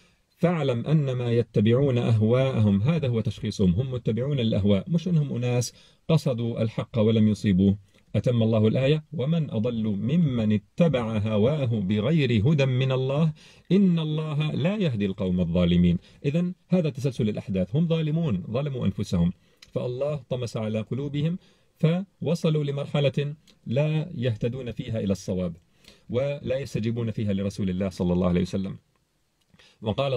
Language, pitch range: Arabic, 110-150 Hz